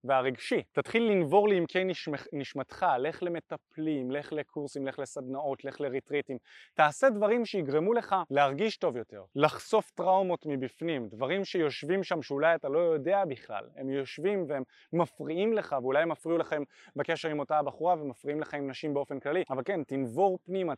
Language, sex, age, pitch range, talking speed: Hebrew, male, 20-39, 145-190 Hz, 155 wpm